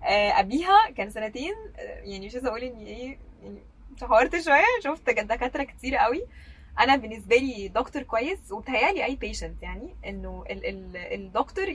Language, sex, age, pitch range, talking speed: Arabic, female, 10-29, 205-270 Hz, 140 wpm